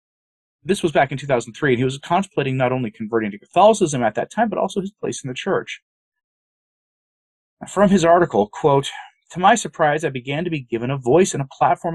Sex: male